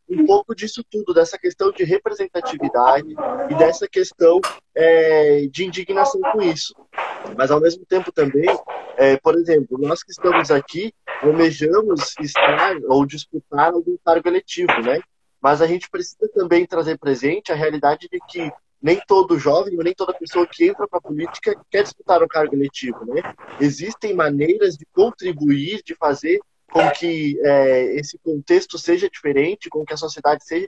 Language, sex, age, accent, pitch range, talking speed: Portuguese, male, 20-39, Brazilian, 150-235 Hz, 160 wpm